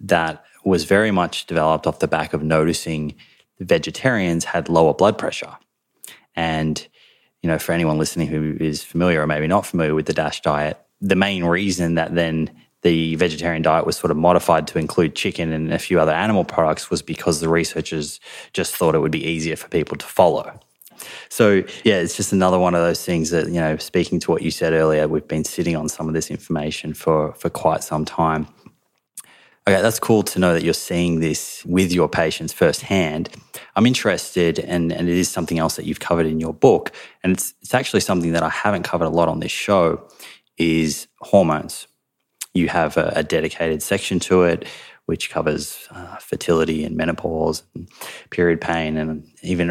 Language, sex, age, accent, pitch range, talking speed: English, male, 20-39, Australian, 80-90 Hz, 195 wpm